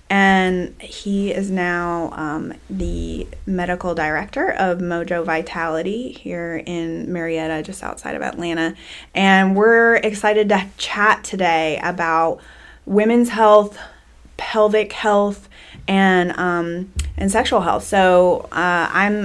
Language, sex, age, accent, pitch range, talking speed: English, female, 20-39, American, 165-190 Hz, 115 wpm